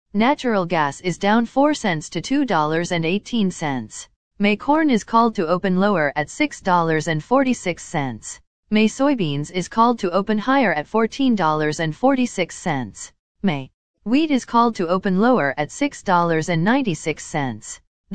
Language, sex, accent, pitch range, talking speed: English, female, American, 160-230 Hz, 110 wpm